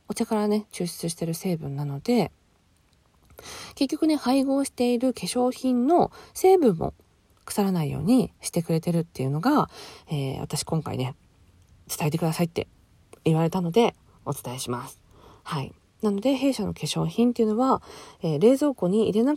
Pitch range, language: 150-225 Hz, Japanese